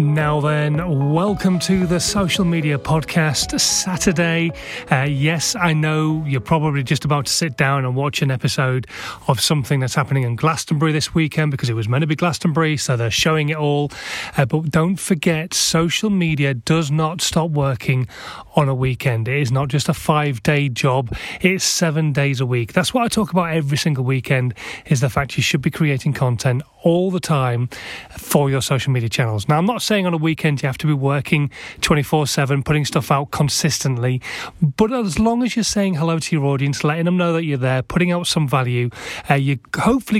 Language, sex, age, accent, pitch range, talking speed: English, male, 30-49, British, 135-170 Hz, 200 wpm